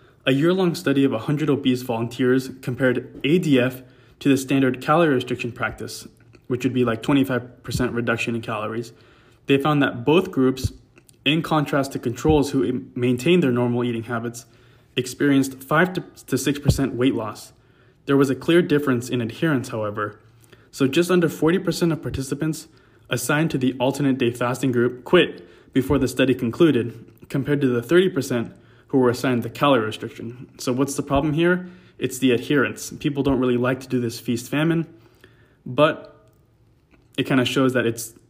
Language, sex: English, male